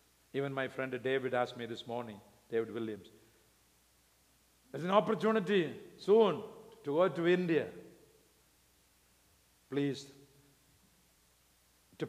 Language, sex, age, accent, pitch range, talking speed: English, male, 50-69, Indian, 105-150 Hz, 100 wpm